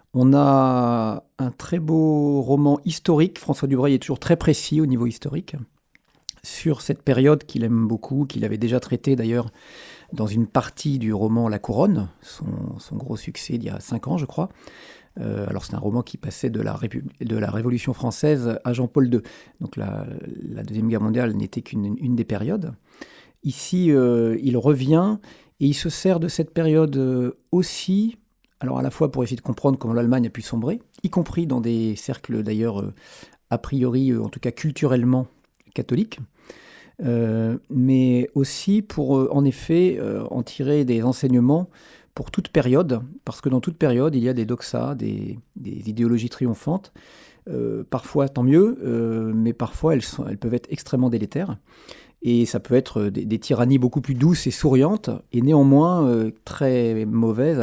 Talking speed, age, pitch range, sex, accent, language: 170 wpm, 40-59, 115-145 Hz, male, French, French